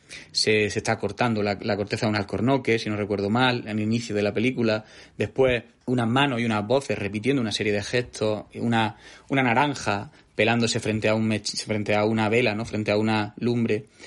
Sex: male